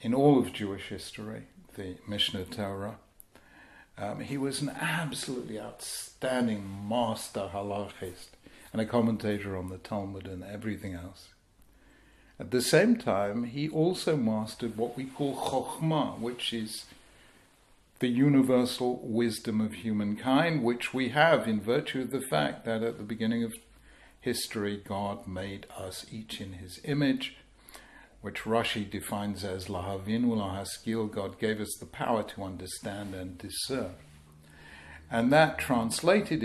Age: 60-79